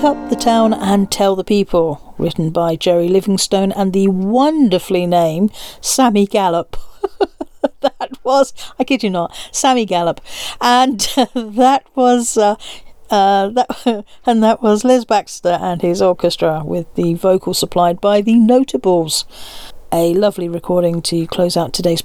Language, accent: English, British